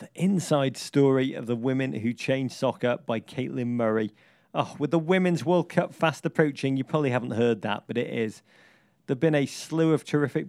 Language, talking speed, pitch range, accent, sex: English, 195 wpm, 120-145 Hz, British, male